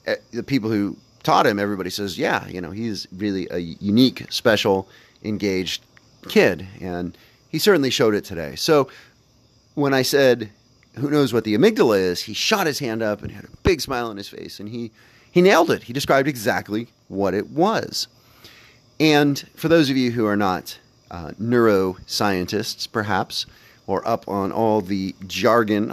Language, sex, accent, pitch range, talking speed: English, male, American, 100-125 Hz, 170 wpm